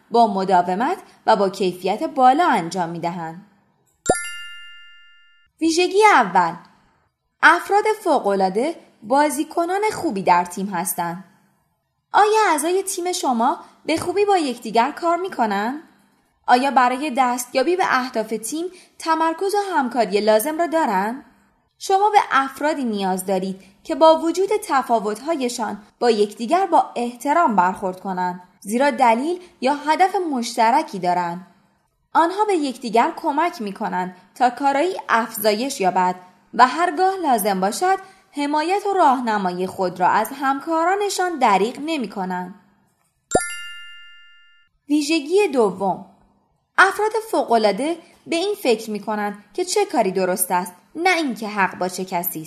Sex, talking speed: female, 120 wpm